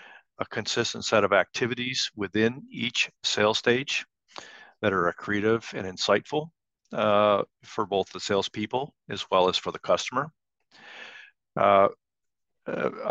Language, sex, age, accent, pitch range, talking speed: English, male, 50-69, American, 100-115 Hz, 120 wpm